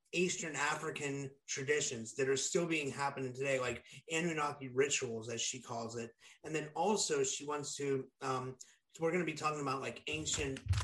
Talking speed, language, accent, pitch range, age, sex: 170 wpm, English, American, 135-155 Hz, 30-49, male